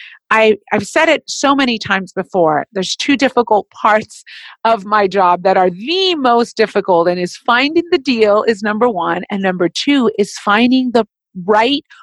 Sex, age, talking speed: female, 40-59, 170 wpm